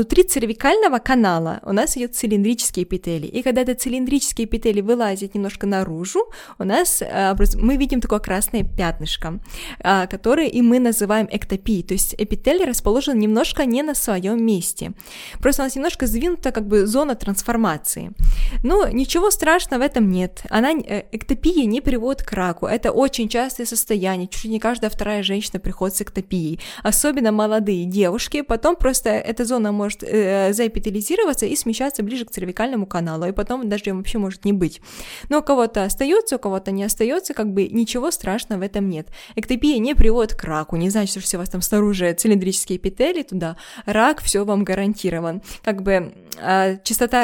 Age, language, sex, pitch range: 20-39, Russian, female, 195-245 Hz